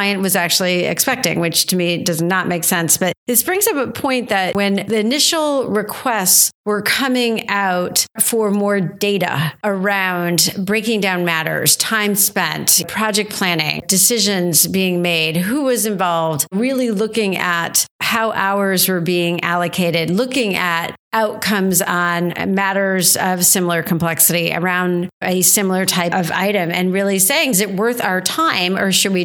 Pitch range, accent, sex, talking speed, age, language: 175-220 Hz, American, female, 155 wpm, 40-59, English